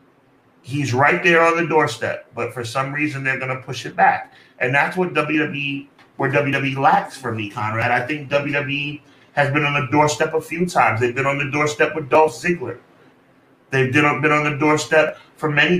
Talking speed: 200 wpm